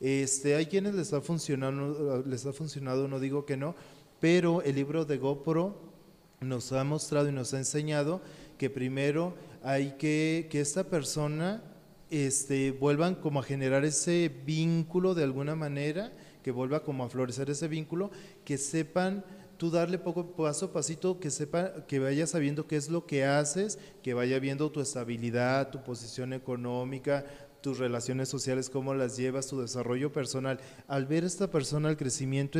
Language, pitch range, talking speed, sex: Spanish, 130-155 Hz, 160 wpm, male